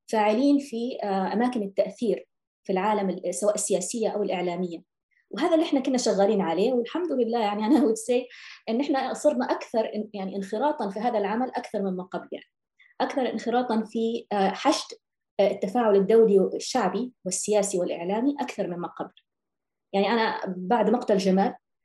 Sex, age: female, 20-39